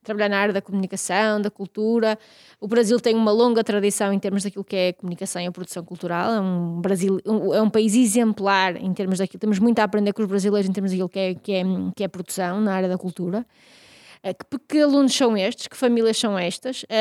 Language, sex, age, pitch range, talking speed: Portuguese, female, 20-39, 205-240 Hz, 210 wpm